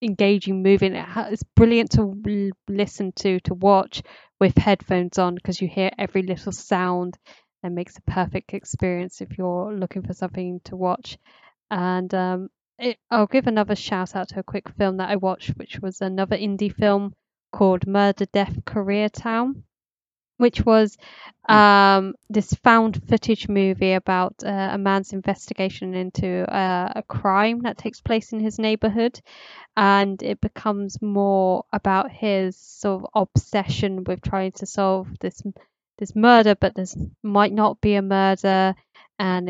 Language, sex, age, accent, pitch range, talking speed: English, female, 10-29, British, 185-205 Hz, 155 wpm